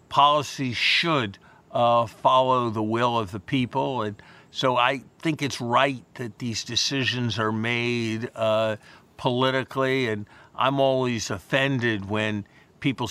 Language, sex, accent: English, male, American